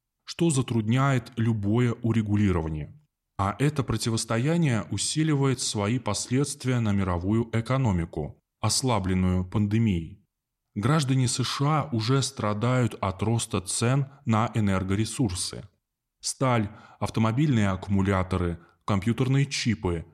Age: 20-39